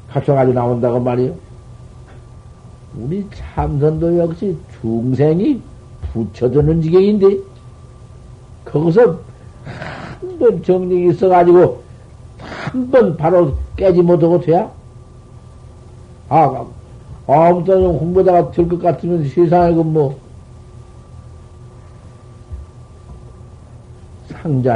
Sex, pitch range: male, 115-165 Hz